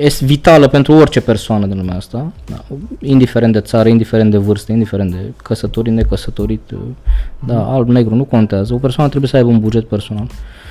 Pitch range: 115-160 Hz